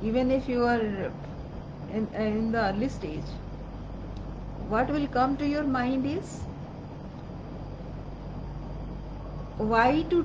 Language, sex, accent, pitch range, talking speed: English, female, Indian, 200-255 Hz, 105 wpm